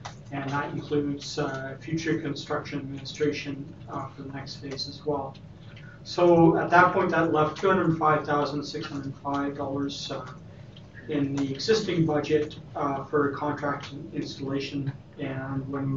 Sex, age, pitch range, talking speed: male, 40-59, 140-155 Hz, 120 wpm